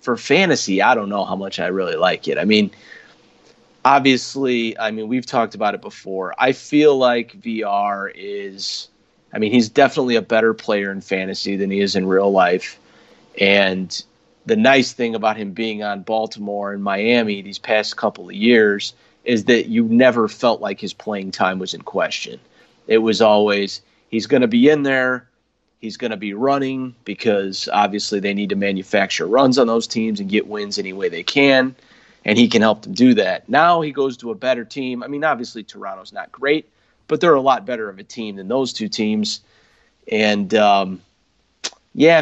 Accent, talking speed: American, 190 wpm